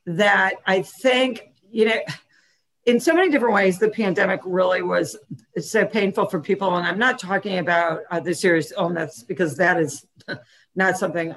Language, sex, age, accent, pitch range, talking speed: English, female, 50-69, American, 170-210 Hz, 170 wpm